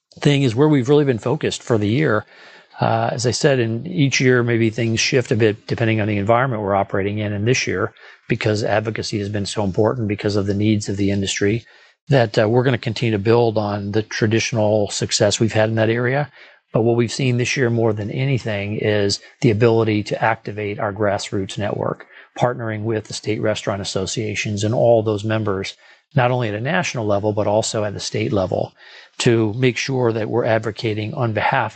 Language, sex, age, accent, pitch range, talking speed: English, male, 40-59, American, 105-120 Hz, 205 wpm